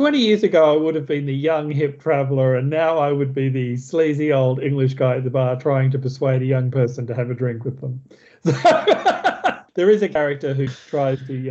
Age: 40-59